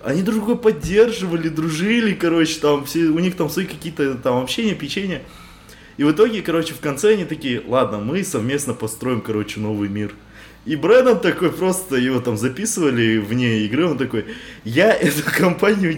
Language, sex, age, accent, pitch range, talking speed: Russian, male, 20-39, native, 105-170 Hz, 165 wpm